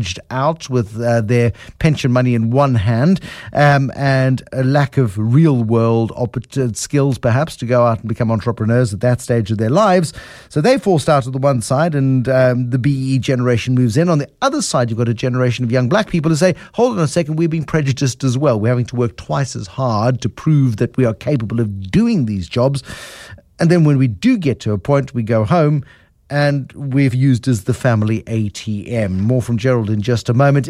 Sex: male